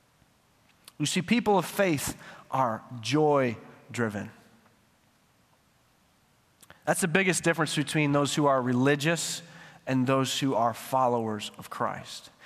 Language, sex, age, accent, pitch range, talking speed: English, male, 30-49, American, 155-245 Hz, 110 wpm